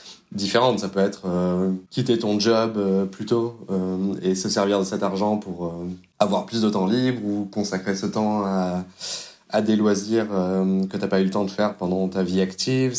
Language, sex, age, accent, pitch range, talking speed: French, male, 20-39, French, 95-110 Hz, 215 wpm